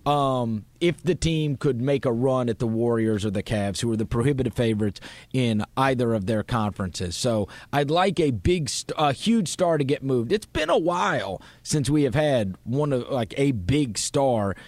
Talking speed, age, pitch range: 200 wpm, 30-49, 115-155 Hz